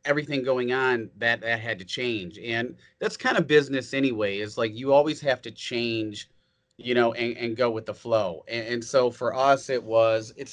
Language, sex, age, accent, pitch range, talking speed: English, male, 30-49, American, 110-130 Hz, 210 wpm